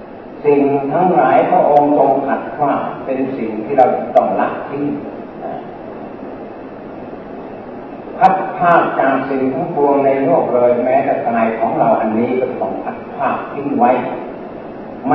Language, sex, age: Thai, male, 30-49